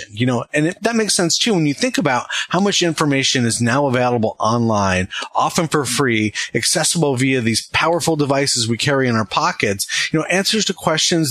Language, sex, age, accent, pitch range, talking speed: English, male, 30-49, American, 115-165 Hz, 190 wpm